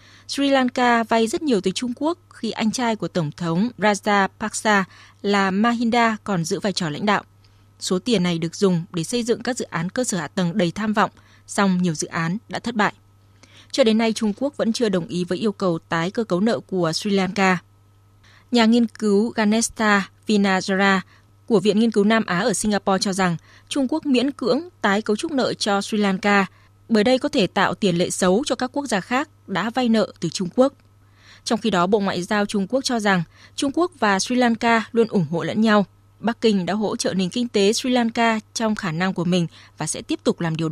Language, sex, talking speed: Vietnamese, female, 225 wpm